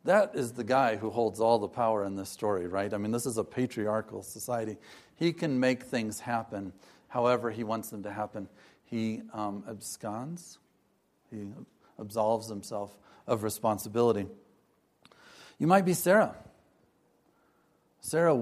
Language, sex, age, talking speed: English, male, 40-59, 145 wpm